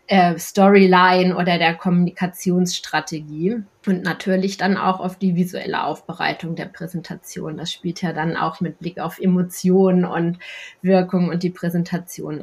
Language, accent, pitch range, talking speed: German, German, 175-195 Hz, 135 wpm